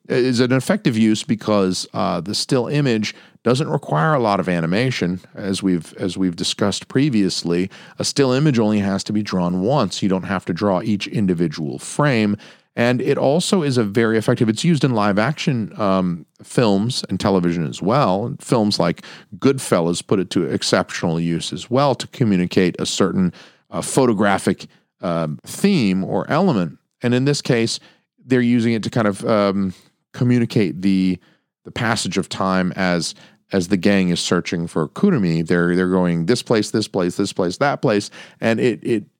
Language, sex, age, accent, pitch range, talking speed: English, male, 40-59, American, 90-120 Hz, 175 wpm